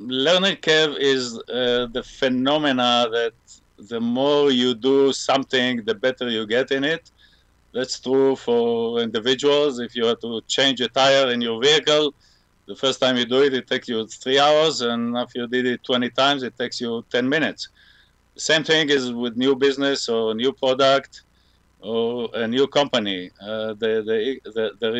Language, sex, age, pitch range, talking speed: English, male, 50-69, 120-140 Hz, 170 wpm